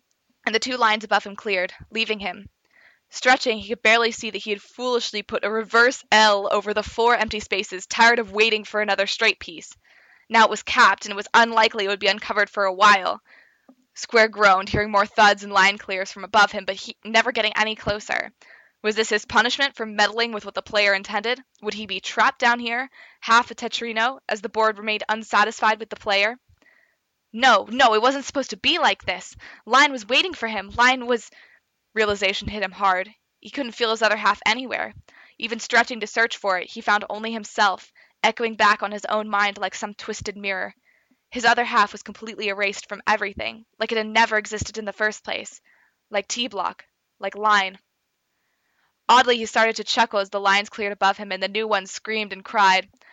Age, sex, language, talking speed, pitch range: 20-39, female, English, 200 wpm, 205-230 Hz